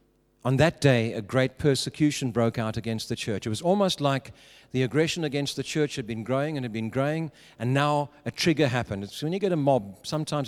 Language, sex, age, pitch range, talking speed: English, male, 50-69, 120-150 Hz, 220 wpm